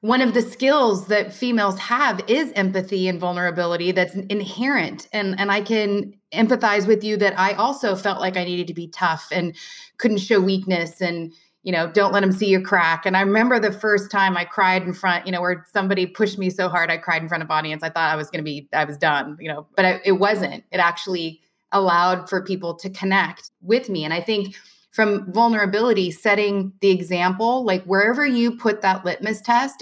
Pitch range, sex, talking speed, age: 170-205 Hz, female, 210 wpm, 30-49